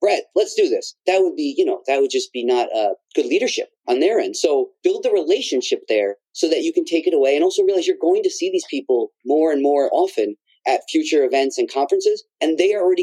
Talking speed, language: 250 wpm, English